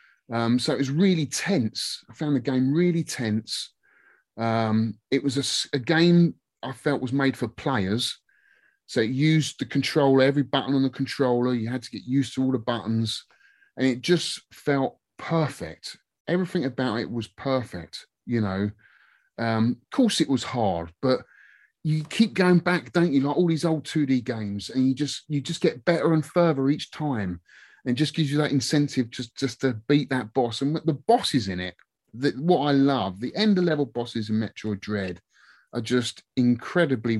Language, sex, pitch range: English, male, 115-150 Hz